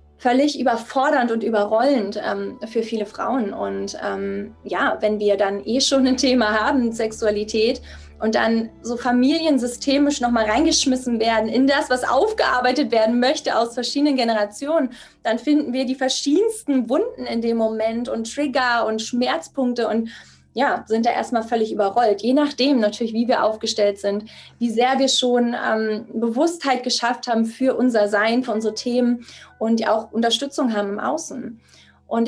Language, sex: German, female